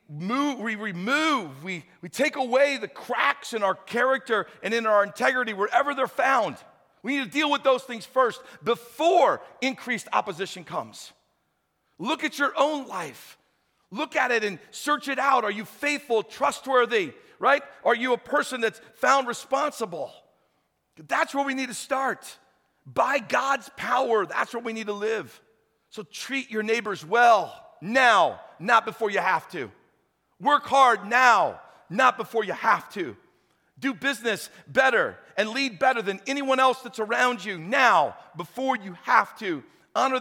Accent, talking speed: American, 160 wpm